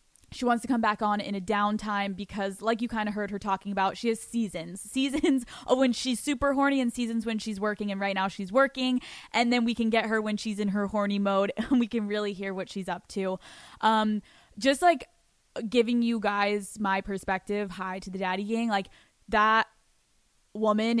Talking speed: 210 wpm